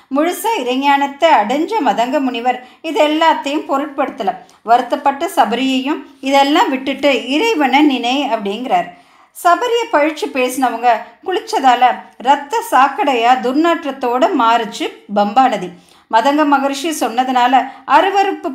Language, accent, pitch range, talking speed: Tamil, native, 245-315 Hz, 90 wpm